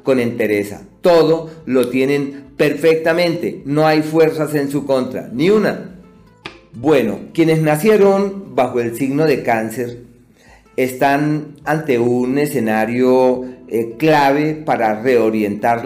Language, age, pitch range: Spanish, 40-59, 115-150 Hz